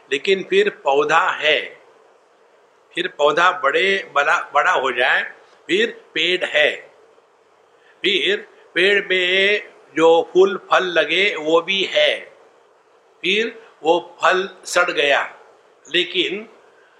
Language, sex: English, male